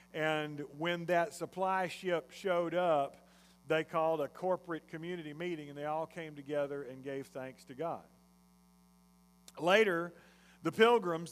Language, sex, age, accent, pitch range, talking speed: English, male, 50-69, American, 145-175 Hz, 140 wpm